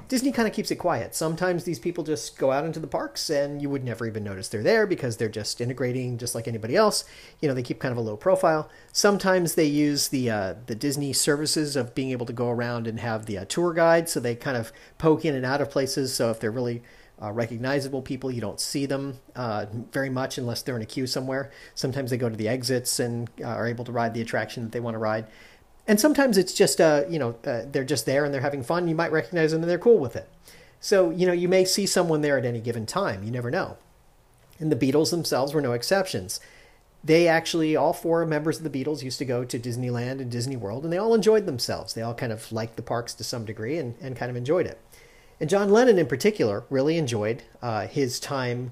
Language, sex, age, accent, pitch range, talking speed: English, male, 40-59, American, 120-160 Hz, 250 wpm